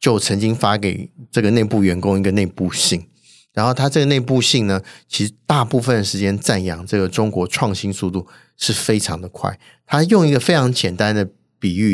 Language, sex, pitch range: Chinese, male, 100-125 Hz